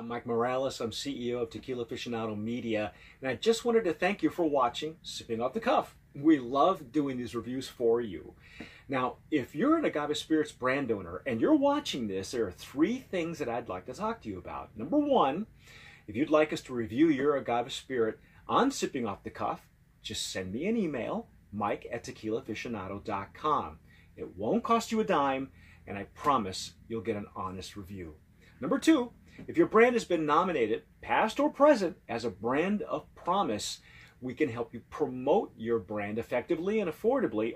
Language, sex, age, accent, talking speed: English, male, 40-59, American, 185 wpm